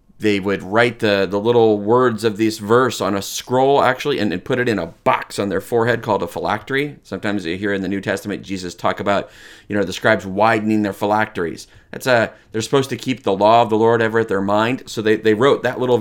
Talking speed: 245 wpm